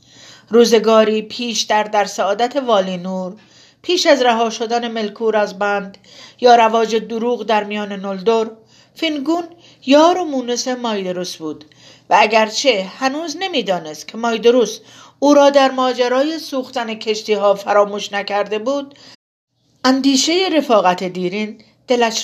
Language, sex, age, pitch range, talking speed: Persian, female, 40-59, 200-250 Hz, 120 wpm